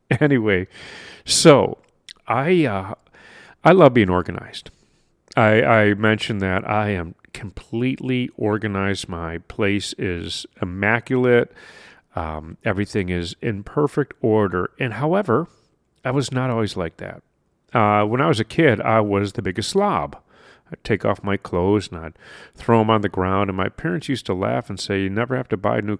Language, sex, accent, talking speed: English, male, American, 165 wpm